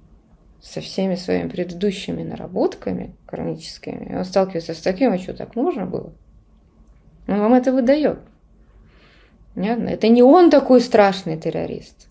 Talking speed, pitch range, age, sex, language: 125 wpm, 175-245 Hz, 20-39, female, Russian